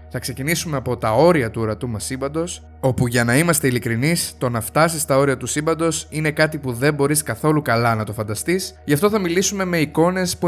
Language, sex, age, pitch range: Greek, male, 20-39, 120-160 Hz